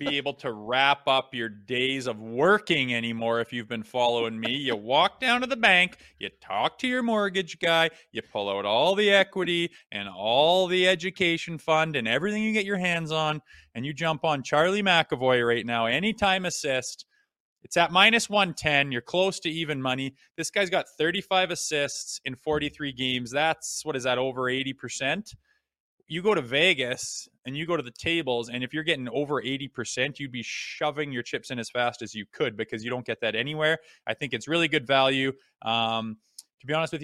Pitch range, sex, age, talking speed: 120-165 Hz, male, 20-39, 200 wpm